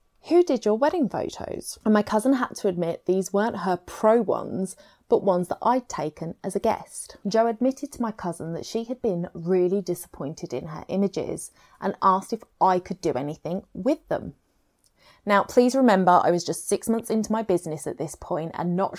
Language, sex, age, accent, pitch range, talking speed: English, female, 20-39, British, 170-220 Hz, 200 wpm